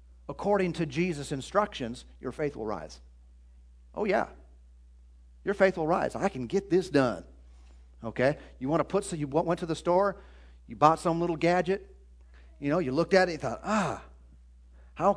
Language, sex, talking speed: English, male, 180 wpm